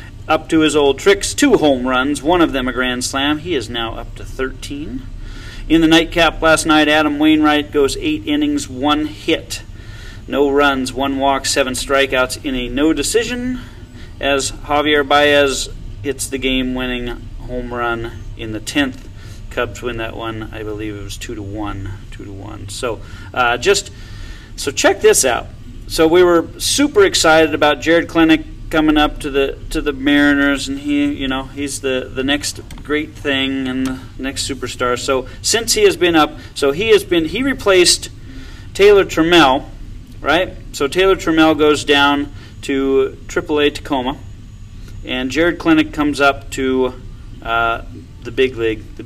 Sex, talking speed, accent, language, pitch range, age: male, 170 wpm, American, English, 110-155 Hz, 40-59